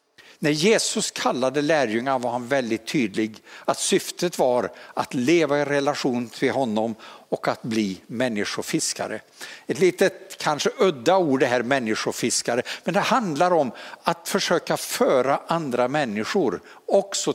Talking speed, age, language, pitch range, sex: 135 wpm, 60-79, Swedish, 125-210 Hz, male